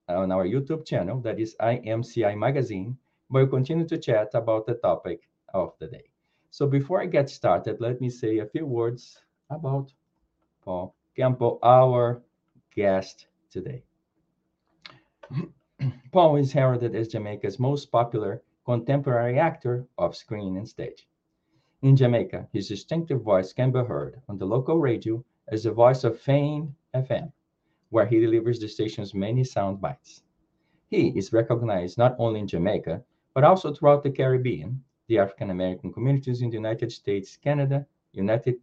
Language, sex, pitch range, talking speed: English, male, 110-140 Hz, 150 wpm